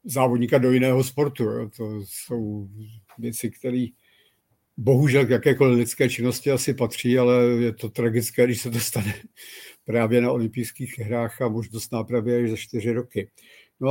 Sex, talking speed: male, 145 wpm